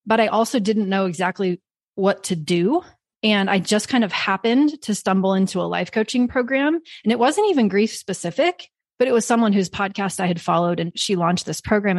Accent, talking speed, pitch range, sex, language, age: American, 210 wpm, 175-220 Hz, female, English, 30-49